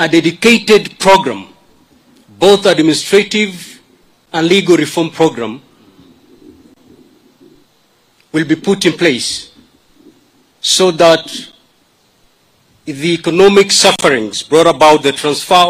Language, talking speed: English, 90 wpm